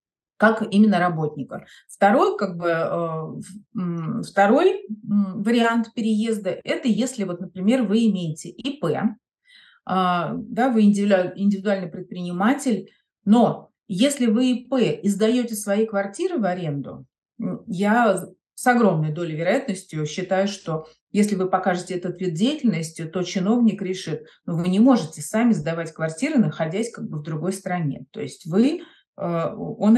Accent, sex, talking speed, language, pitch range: native, female, 125 wpm, Russian, 180-235 Hz